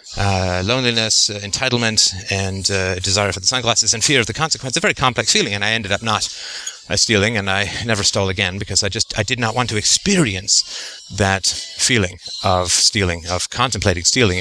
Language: English